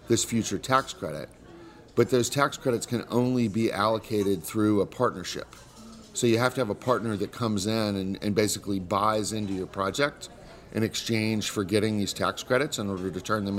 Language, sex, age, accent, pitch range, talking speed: English, male, 40-59, American, 100-120 Hz, 195 wpm